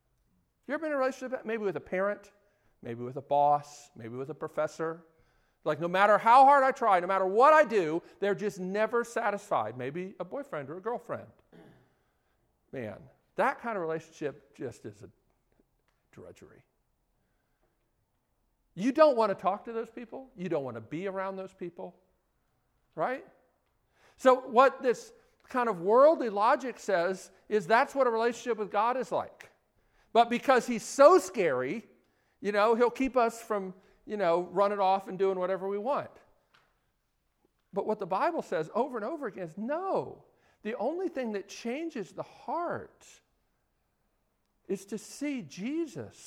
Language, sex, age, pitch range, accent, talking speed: English, male, 50-69, 180-260 Hz, American, 160 wpm